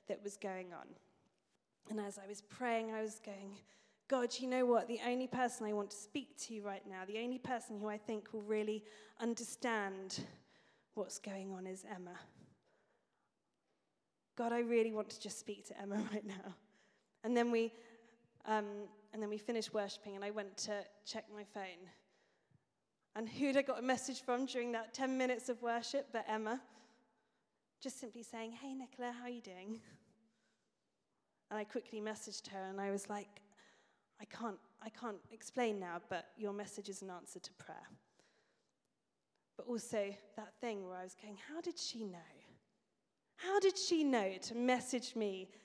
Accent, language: British, English